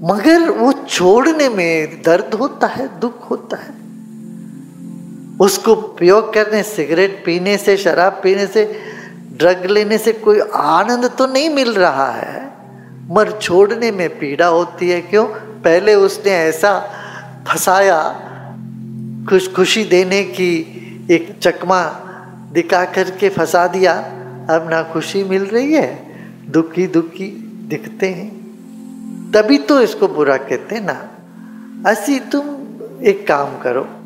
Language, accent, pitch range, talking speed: English, Indian, 165-225 Hz, 125 wpm